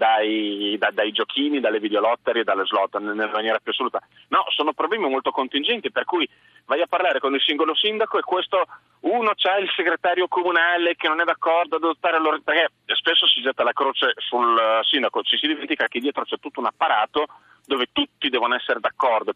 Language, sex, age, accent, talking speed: Italian, male, 40-59, native, 190 wpm